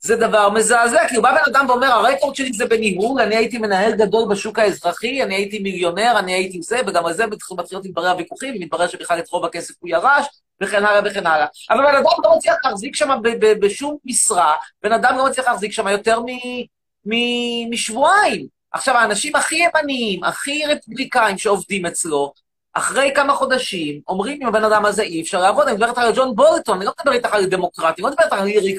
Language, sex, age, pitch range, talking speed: Hebrew, male, 30-49, 185-265 Hz, 155 wpm